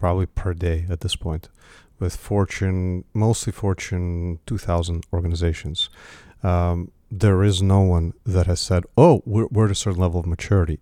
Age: 40-59